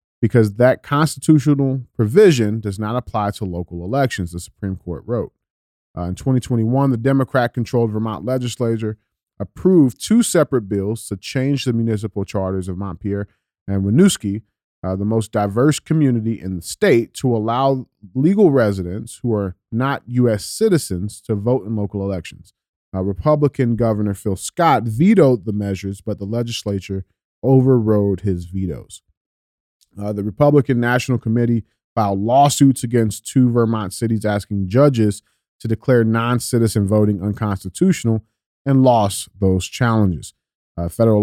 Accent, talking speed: American, 135 wpm